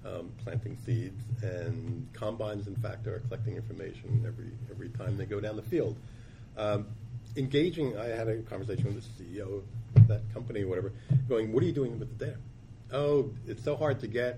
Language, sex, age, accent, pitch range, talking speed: English, male, 50-69, American, 110-125 Hz, 190 wpm